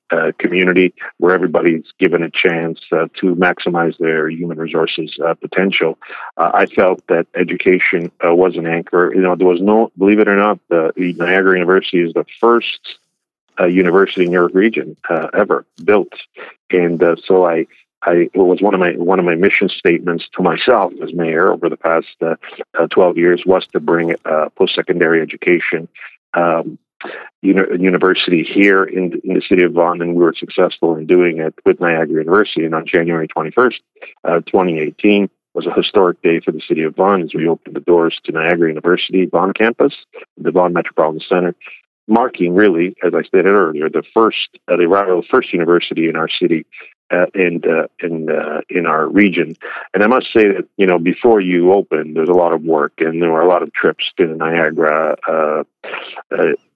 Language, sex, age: English, male, 50-69